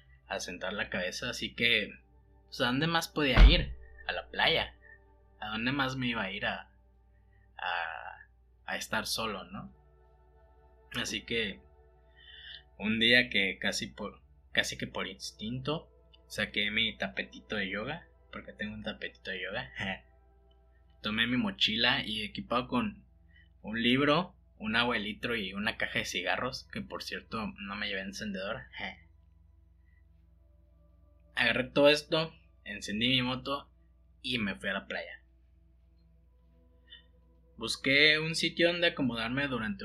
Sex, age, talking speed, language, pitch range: male, 20-39, 145 wpm, Spanish, 80-120 Hz